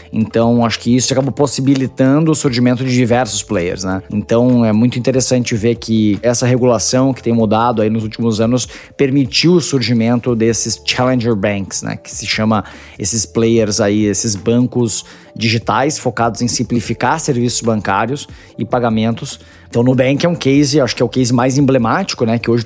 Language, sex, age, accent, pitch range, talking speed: Portuguese, male, 20-39, Brazilian, 110-135 Hz, 170 wpm